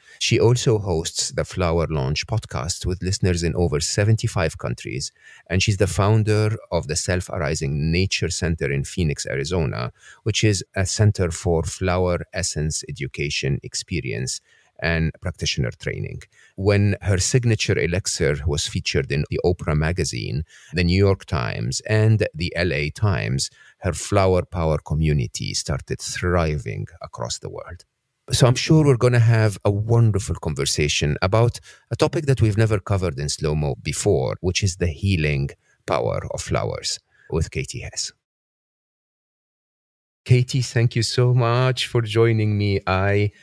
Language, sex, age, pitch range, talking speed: English, male, 40-59, 85-110 Hz, 140 wpm